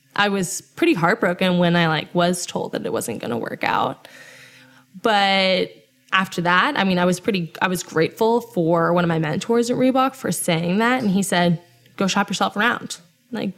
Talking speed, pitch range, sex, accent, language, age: 200 wpm, 175-235 Hz, female, American, English, 10-29